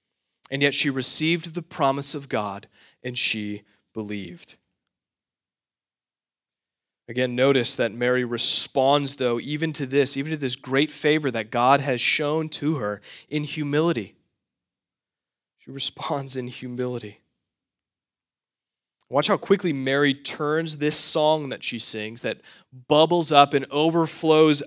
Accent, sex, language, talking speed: American, male, English, 125 wpm